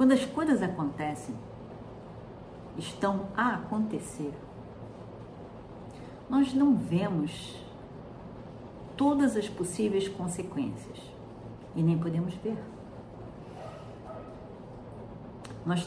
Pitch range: 160-205 Hz